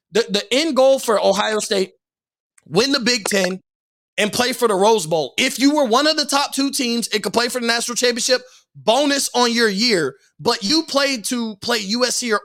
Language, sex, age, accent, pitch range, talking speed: English, male, 20-39, American, 210-265 Hz, 210 wpm